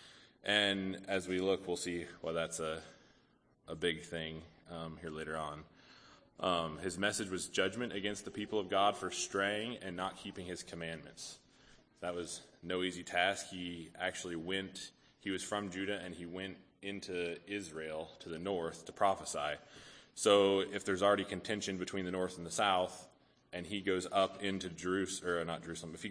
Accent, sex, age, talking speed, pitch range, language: American, male, 20-39, 175 wpm, 85-95 Hz, English